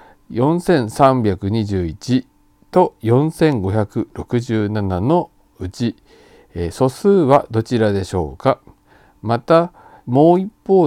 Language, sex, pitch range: Japanese, male, 105-145 Hz